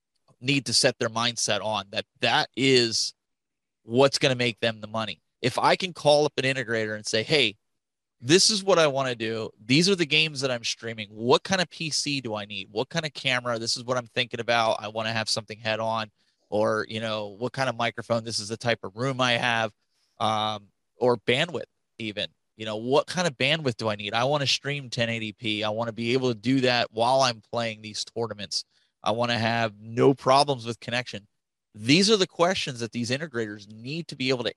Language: English